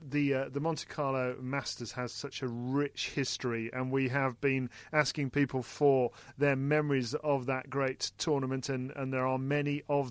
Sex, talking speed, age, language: male, 180 wpm, 40-59, English